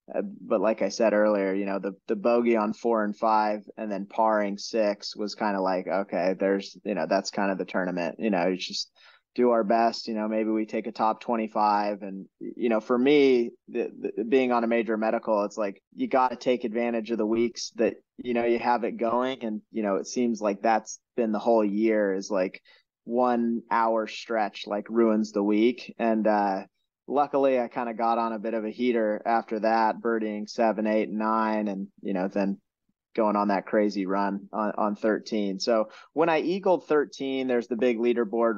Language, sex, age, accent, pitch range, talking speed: English, male, 20-39, American, 105-120 Hz, 205 wpm